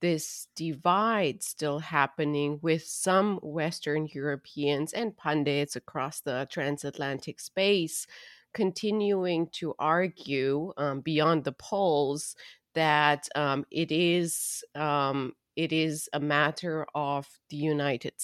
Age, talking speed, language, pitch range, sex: 30-49, 105 wpm, English, 145-170 Hz, female